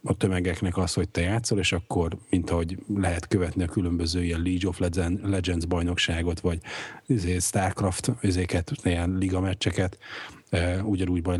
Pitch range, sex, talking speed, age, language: 90-100 Hz, male, 135 wpm, 30-49, Hungarian